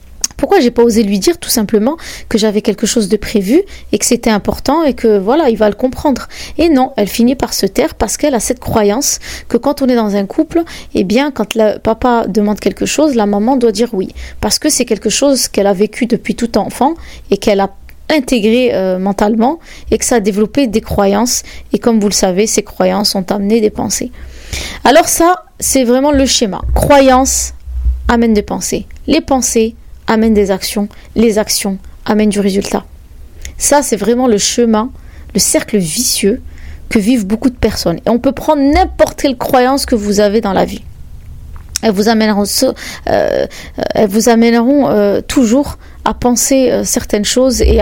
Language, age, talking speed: French, 20-39, 190 wpm